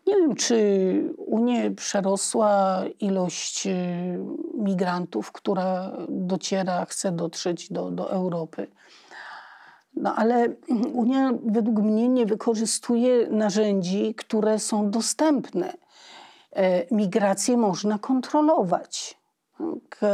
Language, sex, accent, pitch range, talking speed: Polish, female, native, 190-245 Hz, 85 wpm